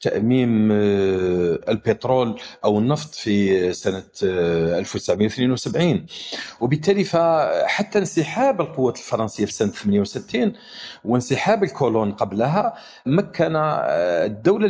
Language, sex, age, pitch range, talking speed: Arabic, male, 40-59, 110-160 Hz, 80 wpm